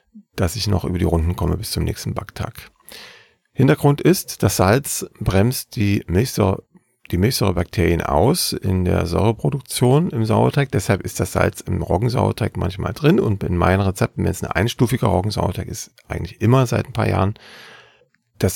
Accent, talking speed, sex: German, 160 wpm, male